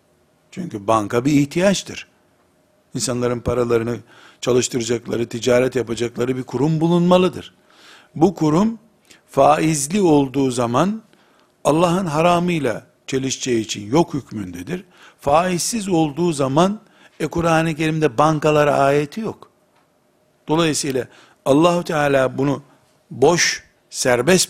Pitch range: 135-175 Hz